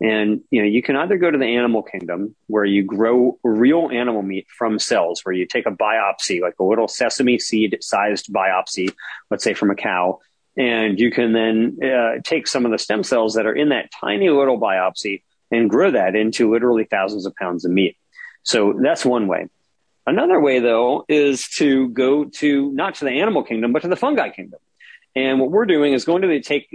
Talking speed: 210 wpm